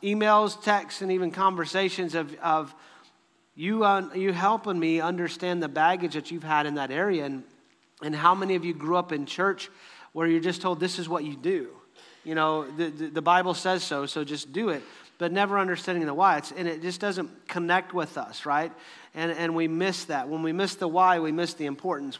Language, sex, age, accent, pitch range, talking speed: English, male, 40-59, American, 155-190 Hz, 215 wpm